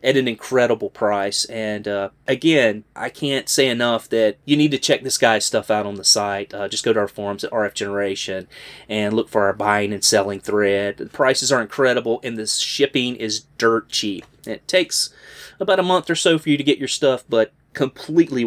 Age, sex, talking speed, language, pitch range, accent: 30-49, male, 210 wpm, English, 115-150 Hz, American